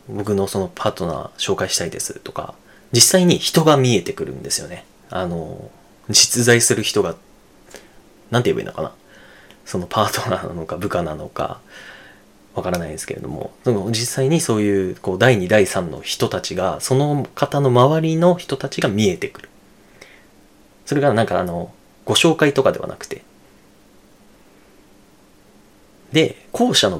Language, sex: Japanese, male